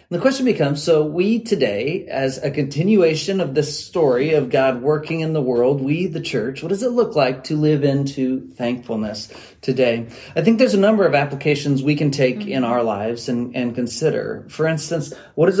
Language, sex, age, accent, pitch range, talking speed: English, male, 40-59, American, 125-155 Hz, 200 wpm